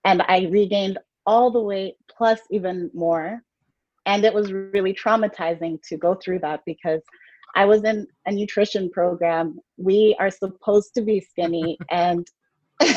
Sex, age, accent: female, 30-49, American